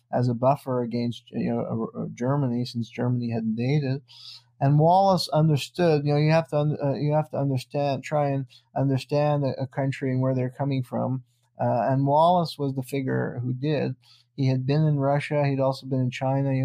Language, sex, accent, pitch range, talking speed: English, male, American, 125-145 Hz, 190 wpm